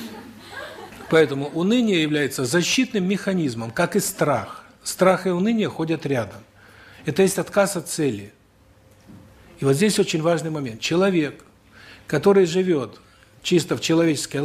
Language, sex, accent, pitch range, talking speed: Russian, male, native, 110-175 Hz, 125 wpm